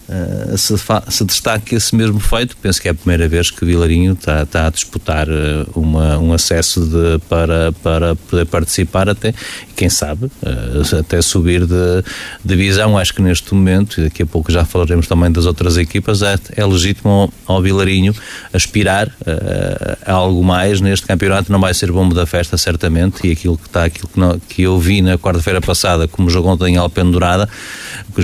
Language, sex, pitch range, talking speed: Portuguese, male, 85-100 Hz, 185 wpm